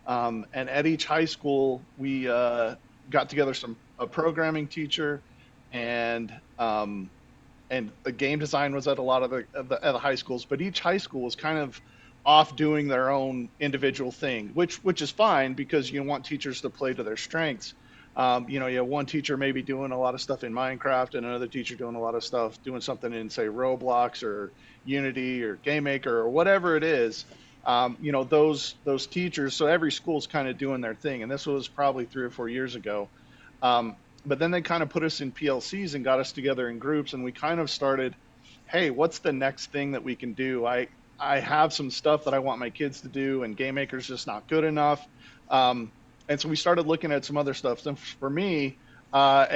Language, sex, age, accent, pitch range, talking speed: English, male, 40-59, American, 125-145 Hz, 220 wpm